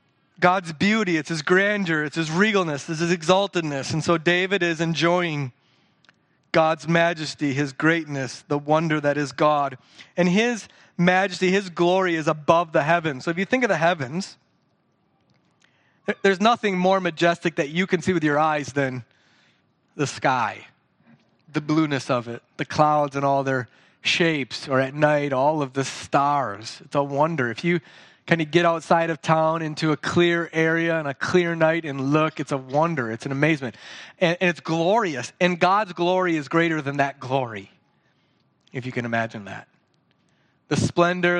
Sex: male